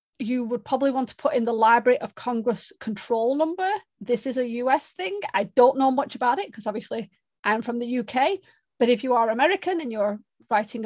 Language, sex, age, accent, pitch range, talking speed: English, female, 30-49, British, 225-280 Hz, 210 wpm